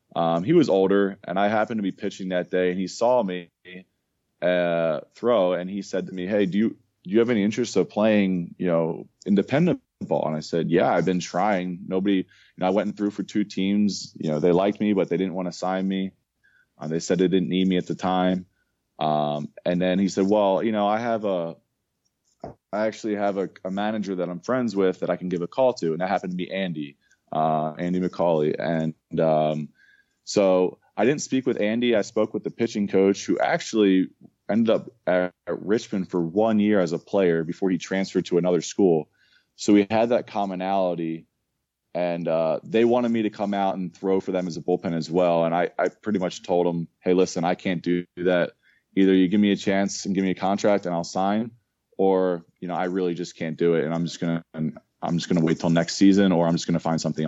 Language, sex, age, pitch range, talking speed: English, male, 20-39, 85-100 Hz, 235 wpm